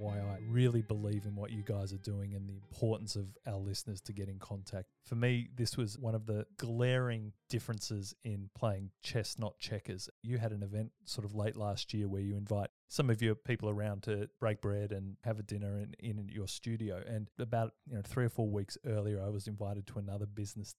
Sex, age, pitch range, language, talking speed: male, 30-49, 105-115 Hz, English, 220 wpm